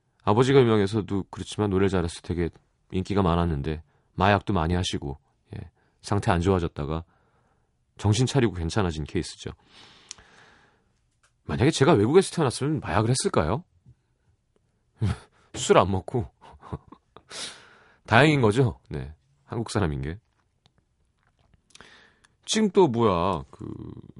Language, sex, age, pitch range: Korean, male, 40-59, 85-115 Hz